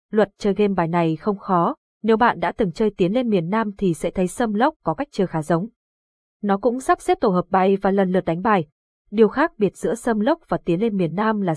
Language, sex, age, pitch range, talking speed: Vietnamese, female, 20-39, 180-230 Hz, 260 wpm